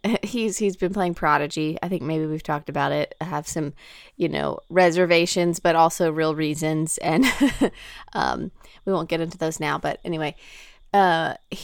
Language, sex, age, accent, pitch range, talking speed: English, female, 20-39, American, 150-175 Hz, 170 wpm